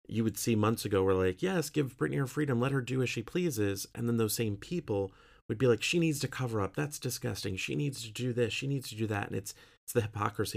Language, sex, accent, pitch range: English, male, American, 105-140 Hz